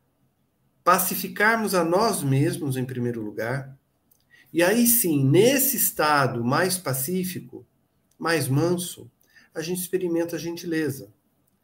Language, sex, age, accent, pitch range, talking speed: Portuguese, male, 50-69, Brazilian, 130-180 Hz, 110 wpm